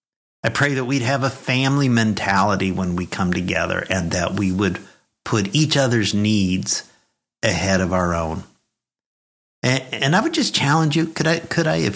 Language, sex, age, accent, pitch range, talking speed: English, male, 50-69, American, 95-130 Hz, 180 wpm